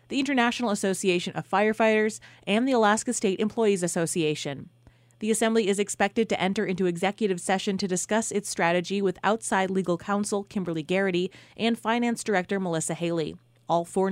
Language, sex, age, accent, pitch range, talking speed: English, female, 30-49, American, 175-220 Hz, 155 wpm